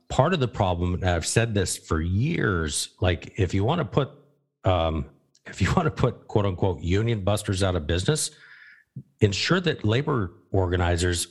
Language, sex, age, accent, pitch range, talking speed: English, male, 50-69, American, 85-110 Hz, 175 wpm